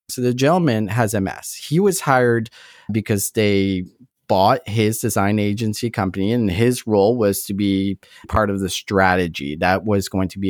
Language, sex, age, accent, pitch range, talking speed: English, male, 40-59, American, 105-150 Hz, 170 wpm